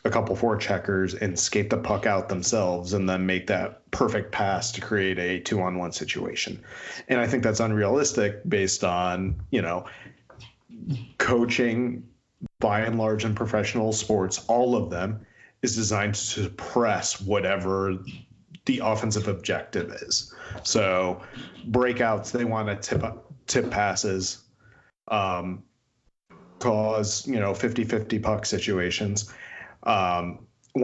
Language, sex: English, male